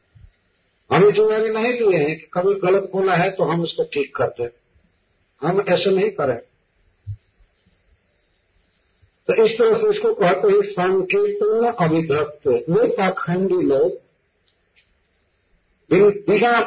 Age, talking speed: 50-69, 120 wpm